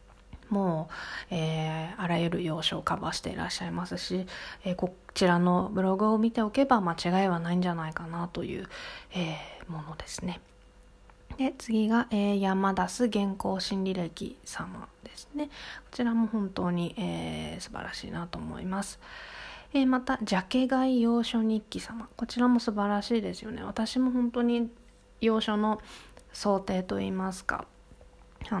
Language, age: Japanese, 20-39